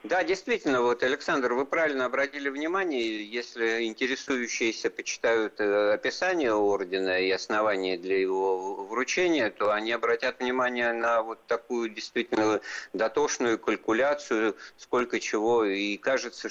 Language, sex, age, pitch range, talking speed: Russian, male, 50-69, 100-145 Hz, 115 wpm